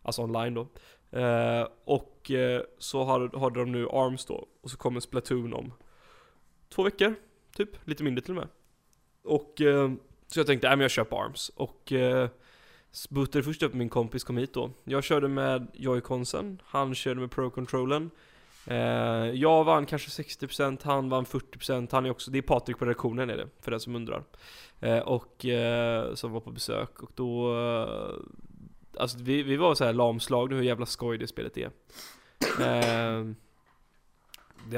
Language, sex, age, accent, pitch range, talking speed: Swedish, male, 10-29, native, 120-135 Hz, 175 wpm